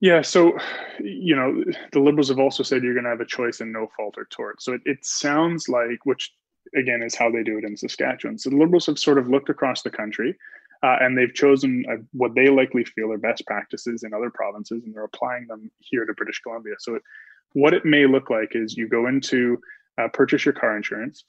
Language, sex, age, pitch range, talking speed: English, male, 20-39, 115-140 Hz, 235 wpm